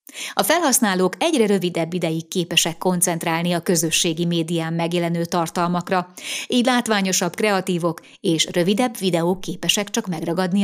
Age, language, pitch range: 30-49, Hungarian, 170-215 Hz